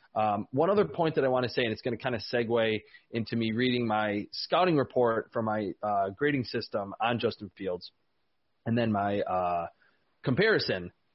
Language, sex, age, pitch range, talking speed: English, male, 20-39, 125-160 Hz, 190 wpm